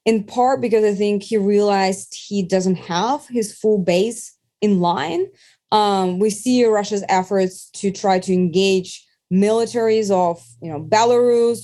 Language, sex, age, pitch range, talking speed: English, female, 20-39, 180-220 Hz, 150 wpm